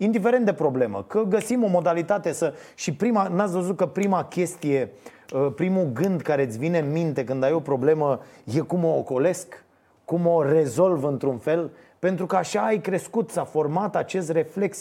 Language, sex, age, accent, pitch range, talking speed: Romanian, male, 30-49, native, 135-185 Hz, 170 wpm